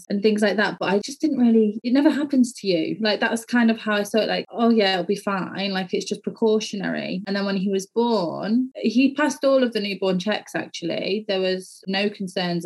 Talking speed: 240 wpm